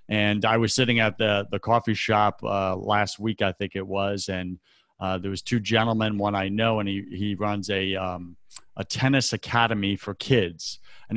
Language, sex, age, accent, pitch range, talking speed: English, male, 30-49, American, 100-125 Hz, 200 wpm